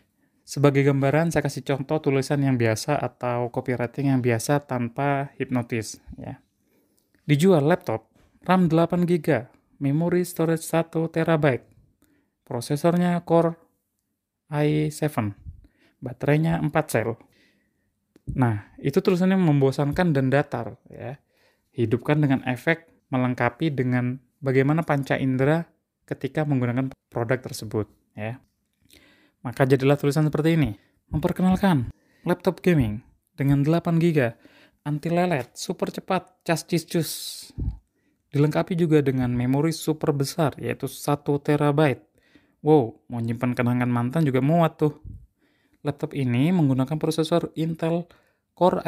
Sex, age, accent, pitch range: male, 20-39, native, 125-165 Hz